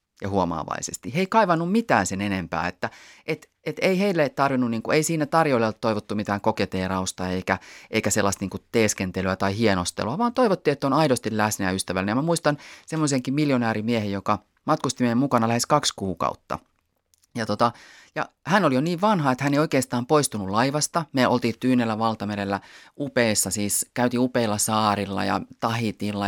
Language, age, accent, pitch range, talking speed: Finnish, 30-49, native, 100-145 Hz, 170 wpm